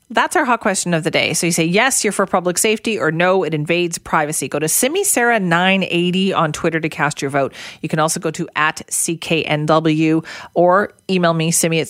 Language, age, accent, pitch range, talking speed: English, 40-59, American, 160-210 Hz, 205 wpm